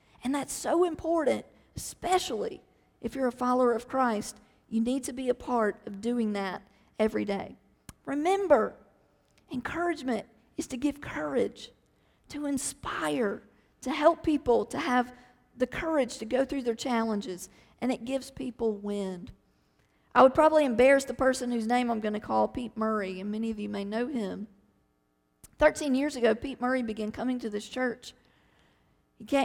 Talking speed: 160 wpm